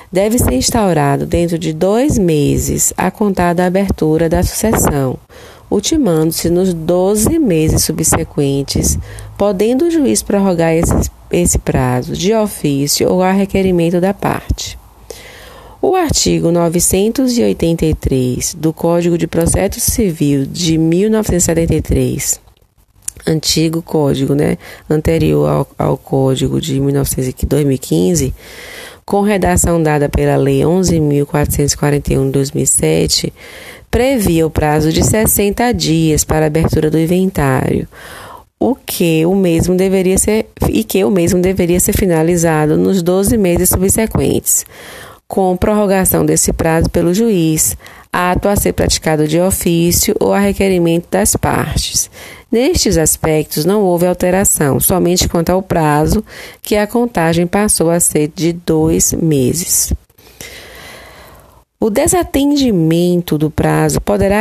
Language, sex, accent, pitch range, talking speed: Portuguese, female, Brazilian, 150-195 Hz, 115 wpm